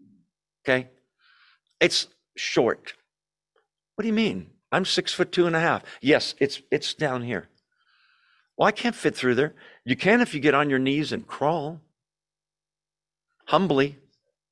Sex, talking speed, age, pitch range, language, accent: male, 150 wpm, 50-69, 130-180 Hz, English, American